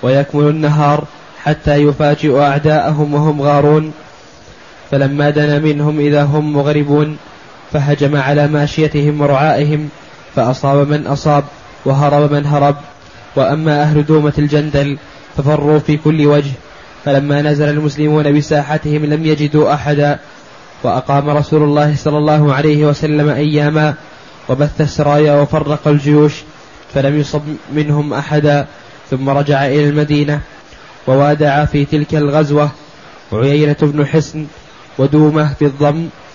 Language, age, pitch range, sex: Arabic, 10-29, 145-150 Hz, male